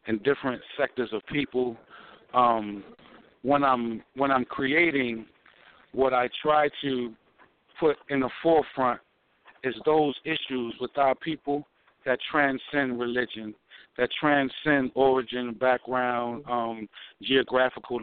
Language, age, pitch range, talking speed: English, 50-69, 115-130 Hz, 115 wpm